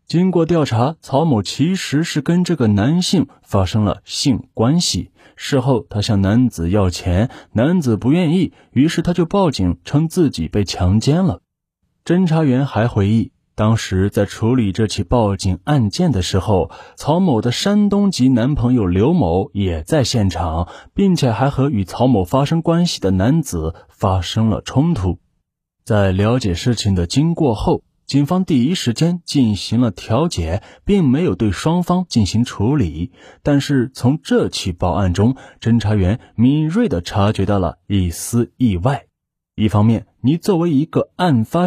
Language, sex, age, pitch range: Chinese, male, 20-39, 100-150 Hz